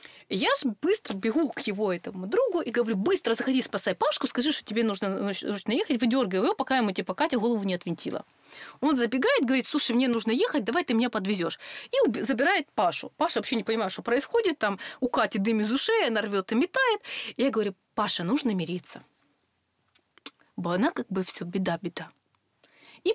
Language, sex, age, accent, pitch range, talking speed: Russian, female, 20-39, native, 195-285 Hz, 185 wpm